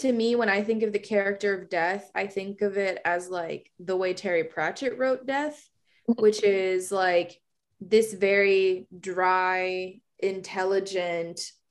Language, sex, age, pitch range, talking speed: English, female, 20-39, 195-285 Hz, 150 wpm